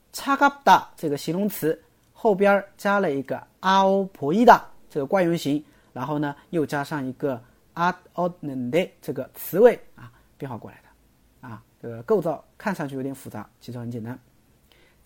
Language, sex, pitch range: Chinese, male, 125-205 Hz